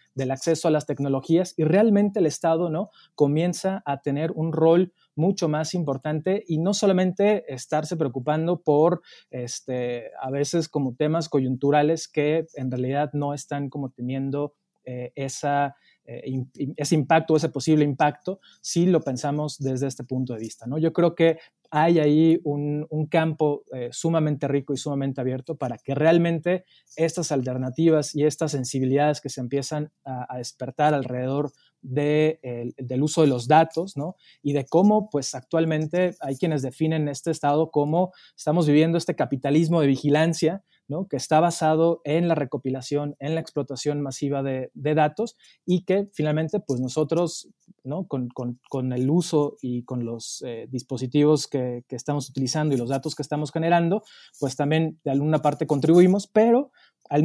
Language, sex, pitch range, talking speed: Spanish, male, 135-165 Hz, 160 wpm